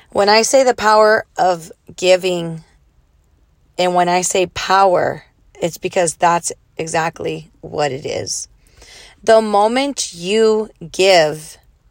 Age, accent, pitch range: 30-49, American, 170-205 Hz